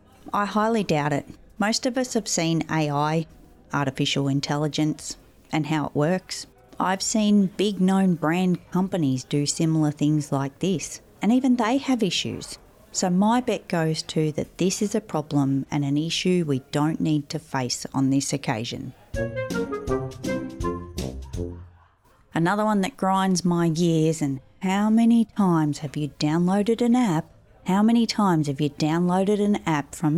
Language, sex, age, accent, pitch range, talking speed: English, female, 30-49, Australian, 140-190 Hz, 155 wpm